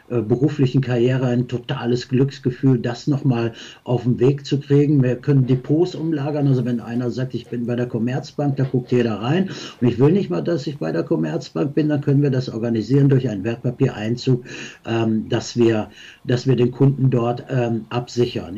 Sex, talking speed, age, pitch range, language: male, 180 wpm, 60-79, 120-140 Hz, German